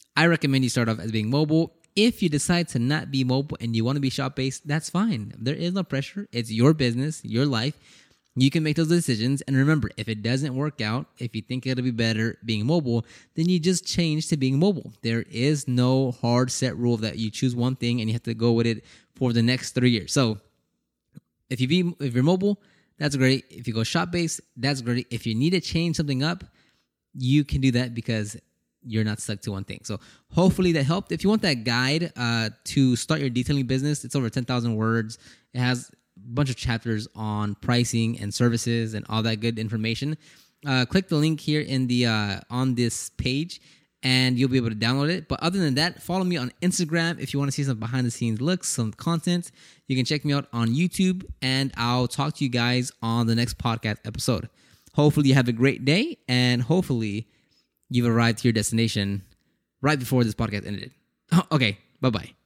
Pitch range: 115-150 Hz